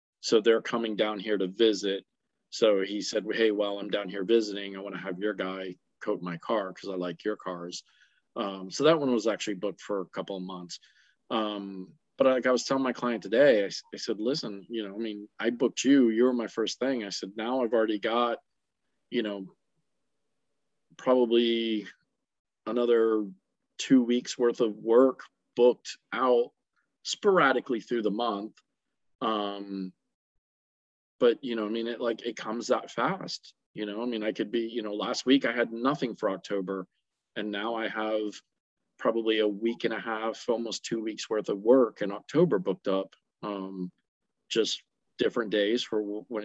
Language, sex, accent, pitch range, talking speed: English, male, American, 100-120 Hz, 185 wpm